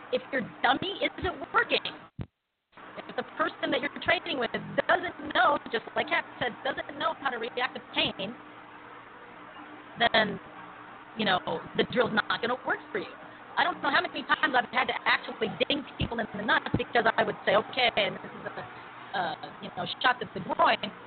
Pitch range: 225-315 Hz